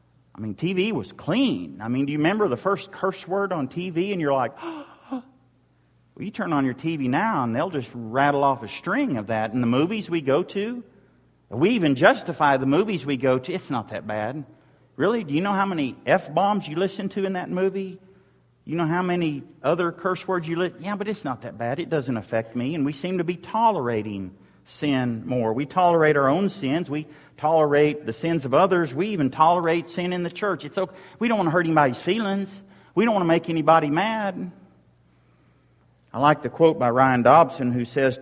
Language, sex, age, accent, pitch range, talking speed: English, male, 50-69, American, 130-185 Hz, 215 wpm